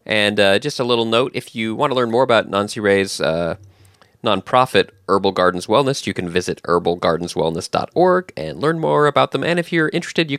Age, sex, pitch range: 20-39, male, 95-130 Hz